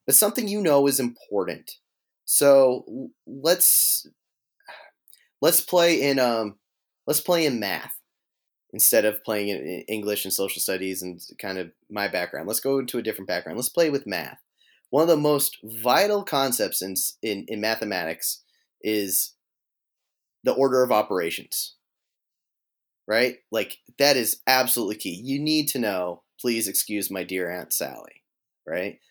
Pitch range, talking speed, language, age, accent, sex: 105-150 Hz, 145 wpm, English, 30-49, American, male